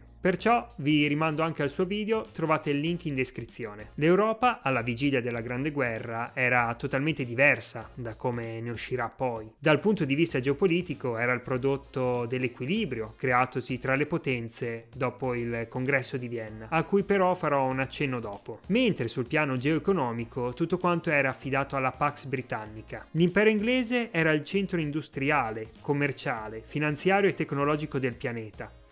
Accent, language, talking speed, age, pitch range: native, Italian, 155 wpm, 30-49, 125-165 Hz